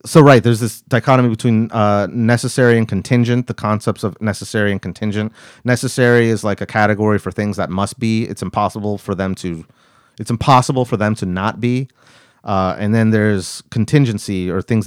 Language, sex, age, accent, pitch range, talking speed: English, male, 30-49, American, 100-120 Hz, 180 wpm